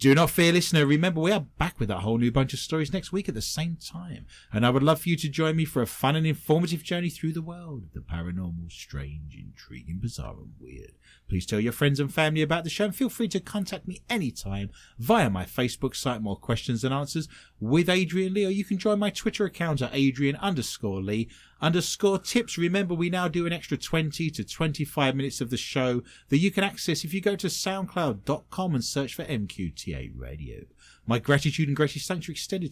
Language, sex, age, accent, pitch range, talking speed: English, male, 30-49, British, 110-170 Hz, 220 wpm